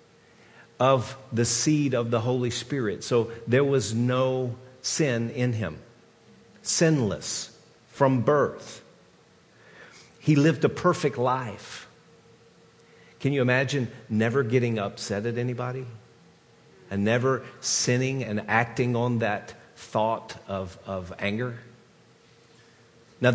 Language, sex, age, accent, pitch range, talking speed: English, male, 50-69, American, 115-150 Hz, 110 wpm